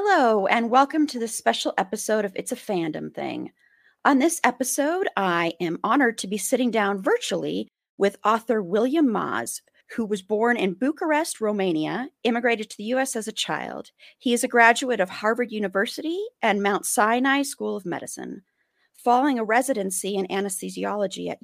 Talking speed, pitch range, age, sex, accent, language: 165 wpm, 185-240 Hz, 40-59, female, American, English